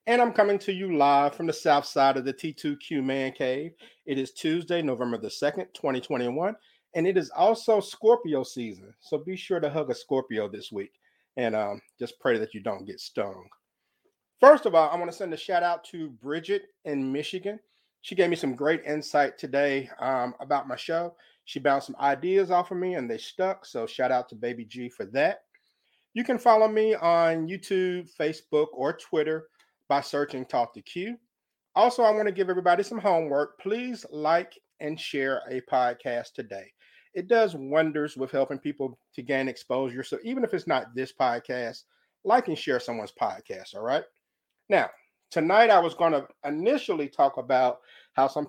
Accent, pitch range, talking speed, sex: American, 135-190 Hz, 190 wpm, male